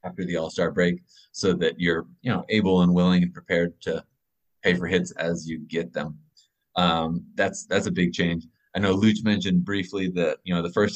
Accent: American